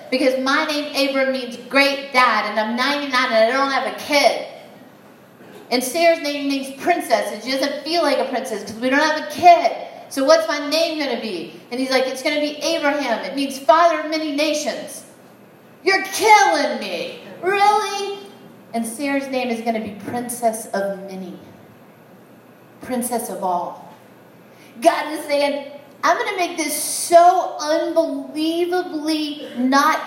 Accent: American